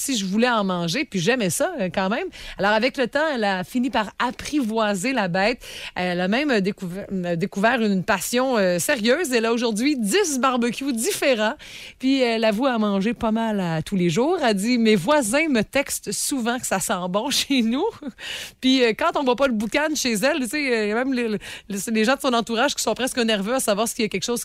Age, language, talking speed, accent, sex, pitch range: 30-49, French, 230 wpm, Canadian, female, 195-255 Hz